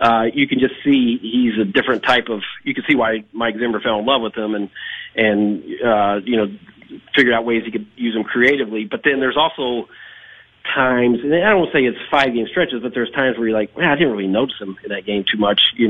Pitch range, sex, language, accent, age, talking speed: 105-125 Hz, male, English, American, 40-59, 255 wpm